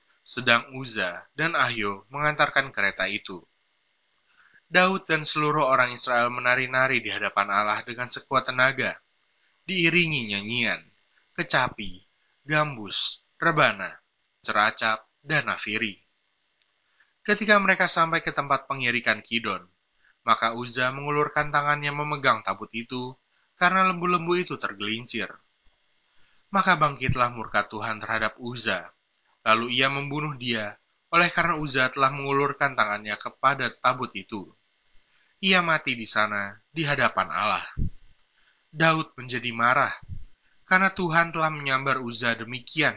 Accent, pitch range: native, 110-150 Hz